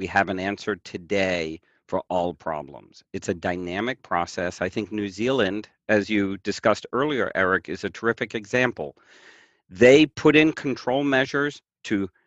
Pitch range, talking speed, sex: 95-125 Hz, 150 wpm, male